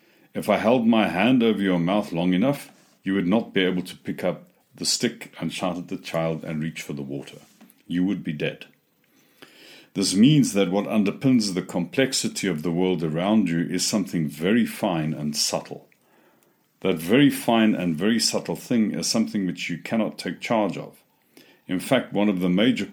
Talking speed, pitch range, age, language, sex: 190 wpm, 85-105 Hz, 60-79, English, male